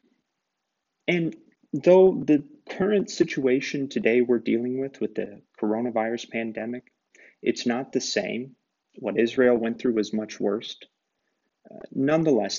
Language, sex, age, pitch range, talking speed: English, male, 30-49, 110-135 Hz, 125 wpm